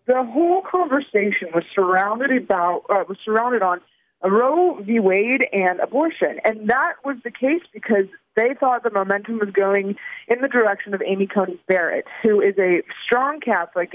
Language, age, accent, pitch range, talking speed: English, 20-39, American, 195-255 Hz, 170 wpm